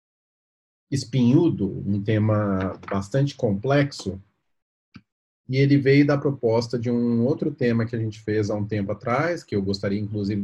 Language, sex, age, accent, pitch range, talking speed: Portuguese, male, 40-59, Brazilian, 100-130 Hz, 150 wpm